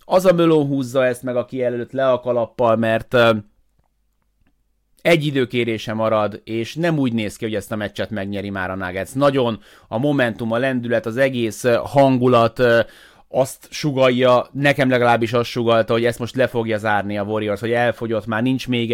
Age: 30-49